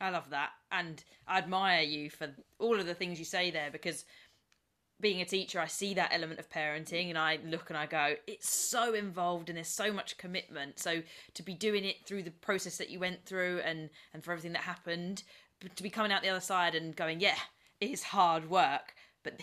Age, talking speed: 20-39, 220 wpm